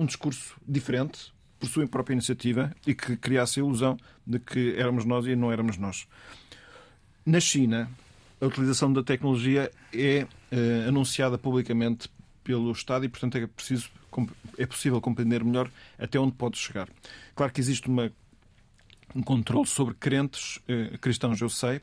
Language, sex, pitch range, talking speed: Portuguese, male, 115-130 Hz, 155 wpm